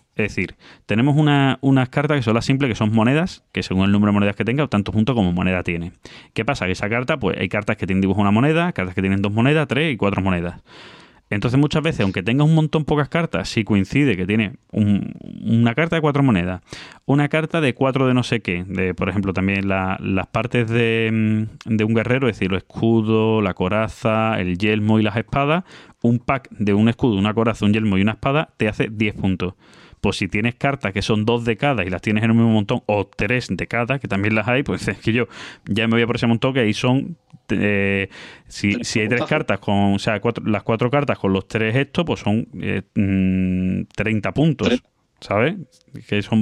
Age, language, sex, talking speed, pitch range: 20-39, Spanish, male, 230 wpm, 100-125 Hz